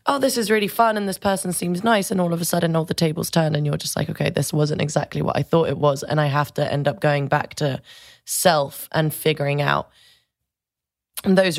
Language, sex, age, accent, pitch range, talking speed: English, female, 20-39, British, 145-170 Hz, 240 wpm